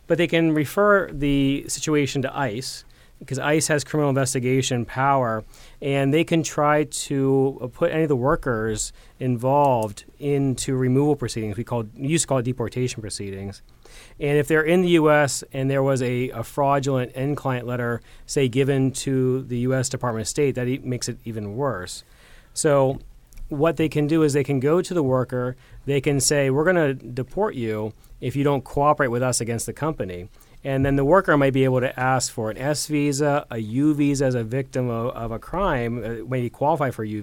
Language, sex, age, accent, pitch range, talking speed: English, male, 30-49, American, 120-145 Hz, 190 wpm